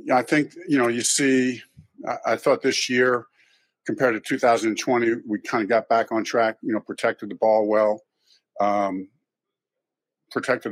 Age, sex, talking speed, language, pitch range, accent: 50-69, male, 155 wpm, English, 105-120 Hz, American